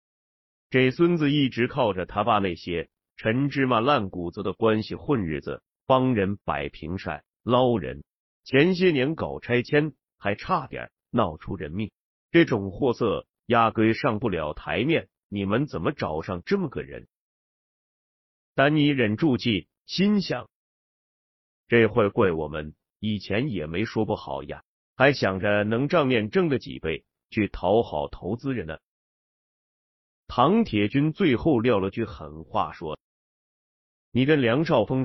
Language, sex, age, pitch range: Chinese, male, 30-49, 95-130 Hz